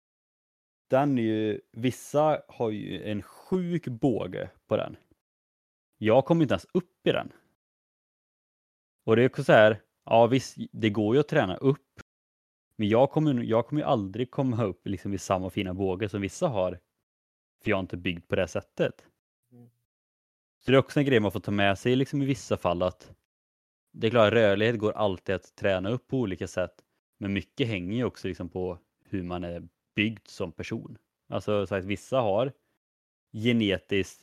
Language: Swedish